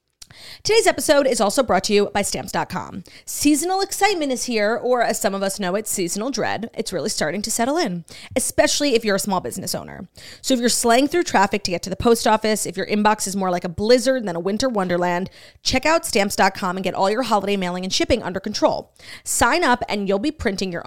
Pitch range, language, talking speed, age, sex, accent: 190-260 Hz, English, 225 wpm, 30-49, female, American